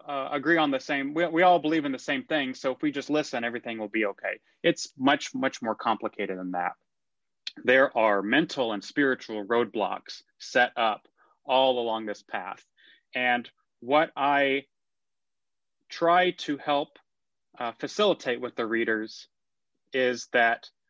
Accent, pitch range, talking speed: American, 115-145 Hz, 155 wpm